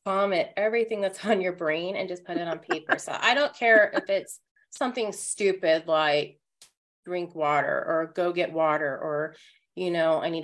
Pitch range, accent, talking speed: 165-200 Hz, American, 185 wpm